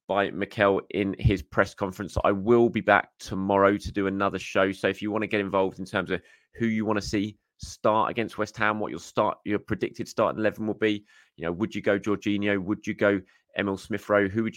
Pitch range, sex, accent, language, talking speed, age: 90-105 Hz, male, British, English, 235 wpm, 30-49